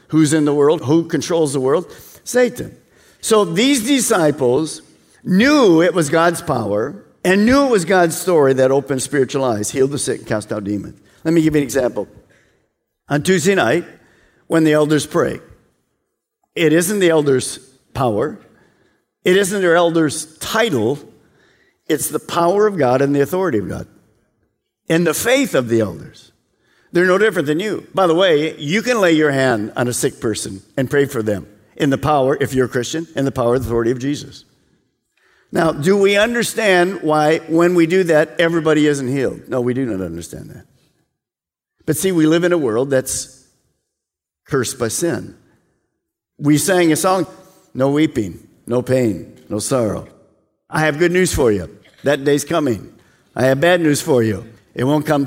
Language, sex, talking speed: English, male, 180 wpm